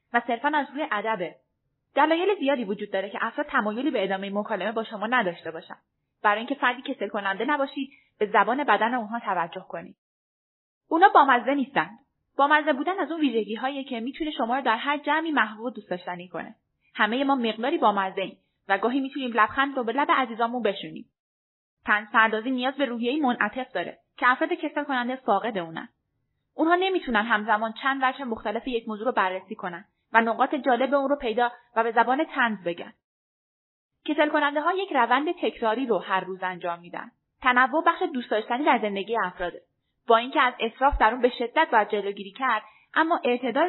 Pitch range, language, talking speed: 215-285 Hz, Persian, 180 wpm